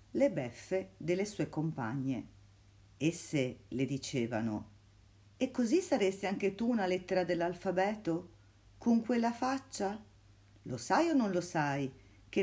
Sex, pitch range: female, 105-170 Hz